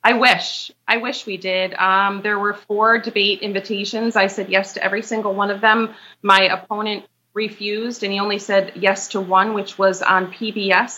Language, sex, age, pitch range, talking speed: English, female, 30-49, 200-245 Hz, 190 wpm